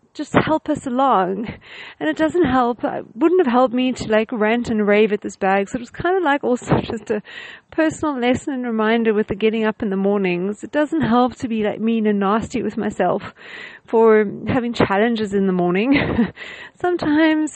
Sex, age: female, 40-59